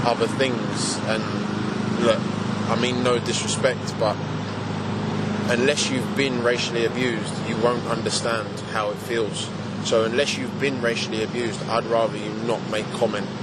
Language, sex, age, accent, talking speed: English, male, 20-39, British, 145 wpm